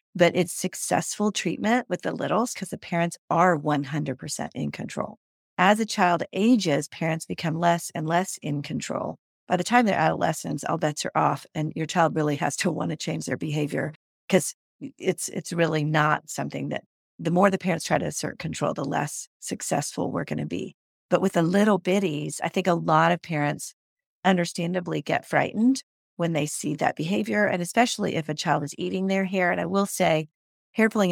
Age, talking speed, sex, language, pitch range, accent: 40-59, 195 wpm, female, English, 155-185 Hz, American